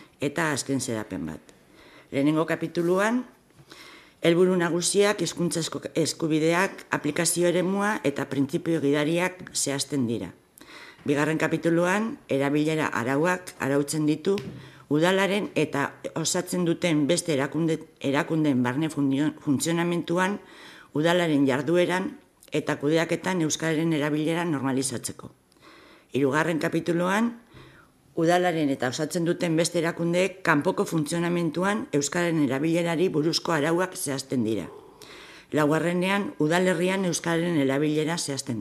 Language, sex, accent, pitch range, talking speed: Spanish, female, Spanish, 145-175 Hz, 90 wpm